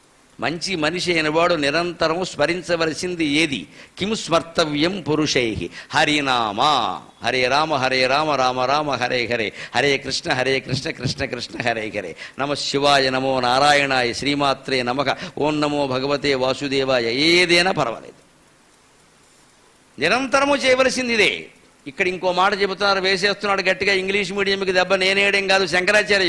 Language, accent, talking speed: Telugu, native, 125 wpm